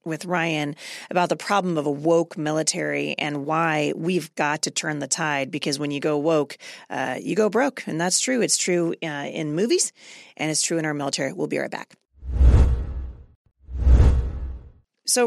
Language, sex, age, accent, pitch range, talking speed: English, female, 30-49, American, 145-180 Hz, 175 wpm